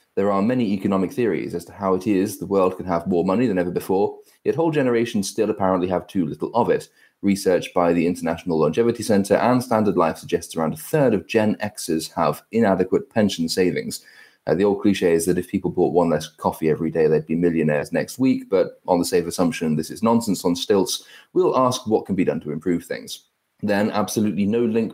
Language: English